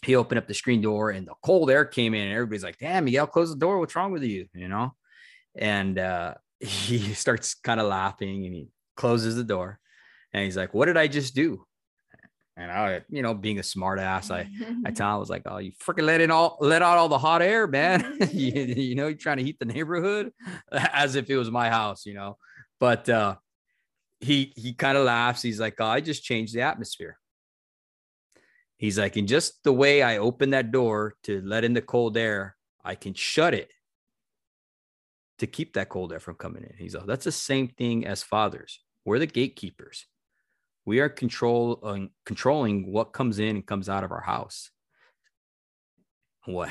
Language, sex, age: English, male, 20-39